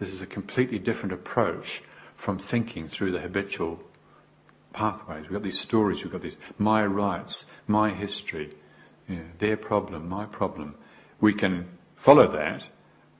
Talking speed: 140 wpm